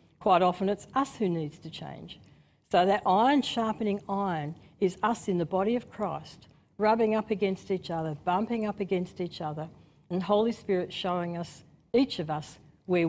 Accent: Australian